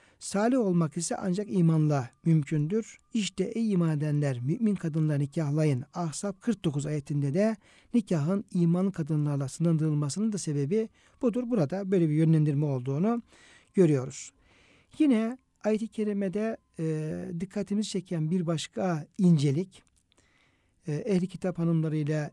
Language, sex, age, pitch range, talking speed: Turkish, male, 60-79, 150-195 Hz, 115 wpm